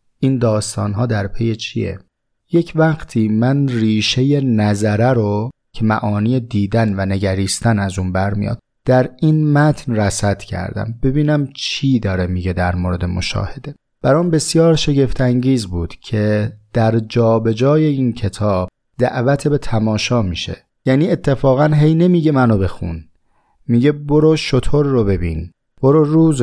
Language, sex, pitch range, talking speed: Persian, male, 105-145 Hz, 135 wpm